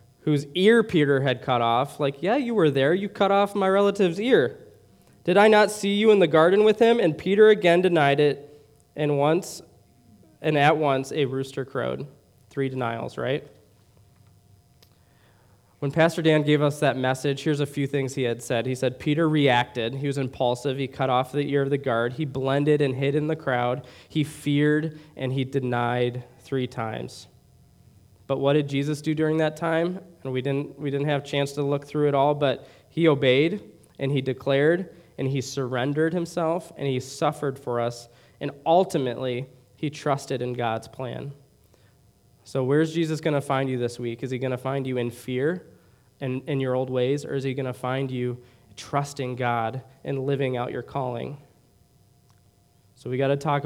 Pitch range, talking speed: 125-150 Hz, 185 wpm